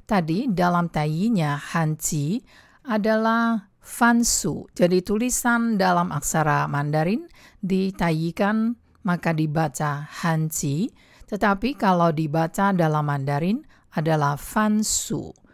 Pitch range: 150-200 Hz